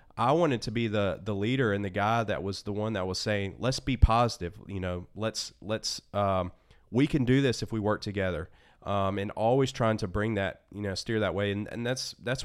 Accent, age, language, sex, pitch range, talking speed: American, 30-49, English, male, 95-120 Hz, 235 wpm